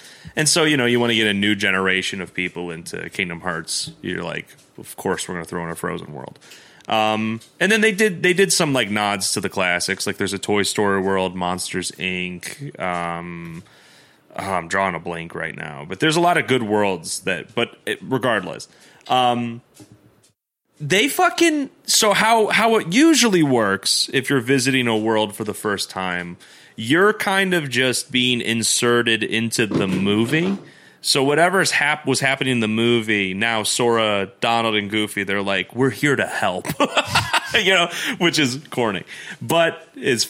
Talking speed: 185 wpm